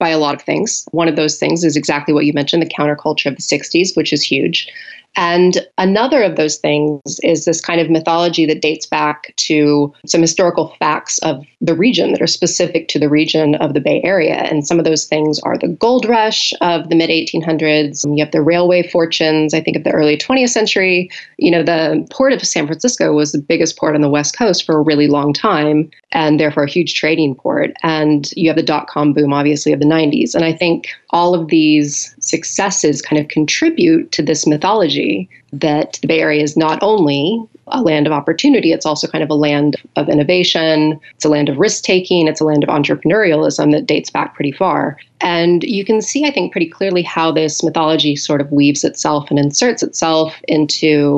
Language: English